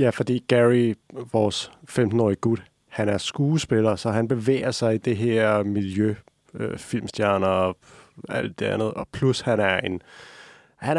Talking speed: 165 wpm